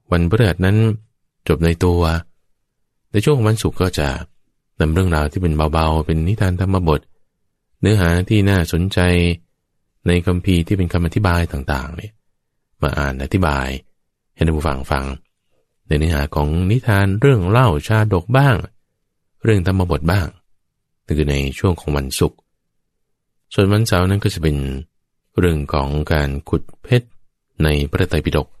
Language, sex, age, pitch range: English, male, 20-39, 75-95 Hz